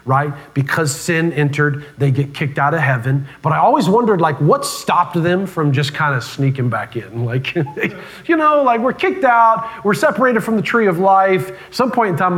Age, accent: 40-59, American